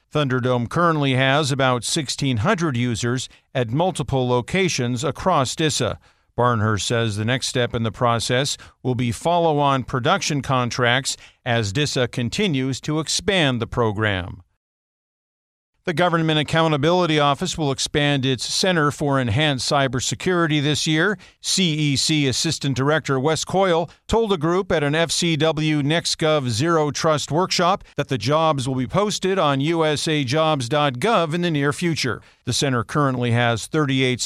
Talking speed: 135 wpm